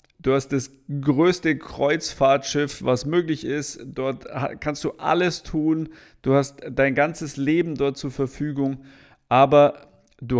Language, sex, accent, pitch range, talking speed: German, male, German, 130-150 Hz, 135 wpm